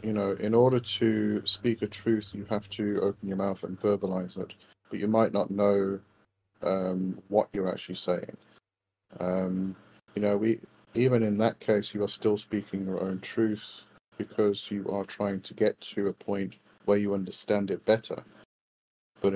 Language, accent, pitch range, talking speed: English, British, 100-110 Hz, 175 wpm